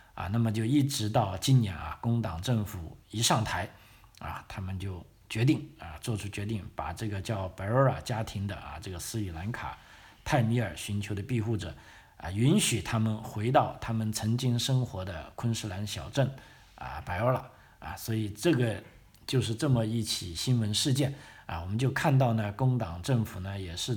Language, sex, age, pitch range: Chinese, male, 50-69, 100-125 Hz